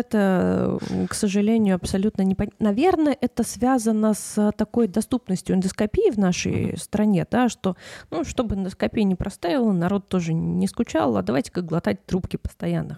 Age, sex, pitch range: 20-39, female, 185-225 Hz